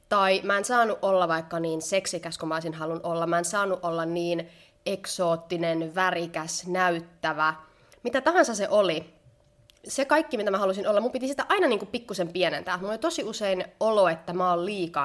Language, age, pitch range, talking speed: Finnish, 20-39, 170-220 Hz, 180 wpm